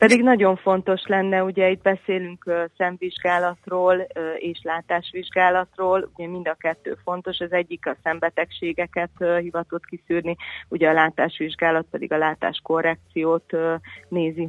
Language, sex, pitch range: Hungarian, female, 160-180 Hz